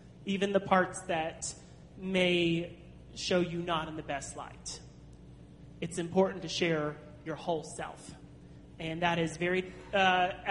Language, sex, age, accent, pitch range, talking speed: English, male, 30-49, American, 155-190 Hz, 135 wpm